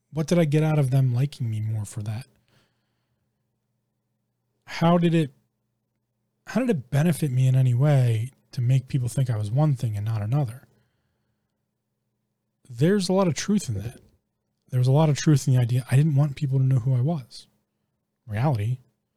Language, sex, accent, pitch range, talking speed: English, male, American, 115-150 Hz, 190 wpm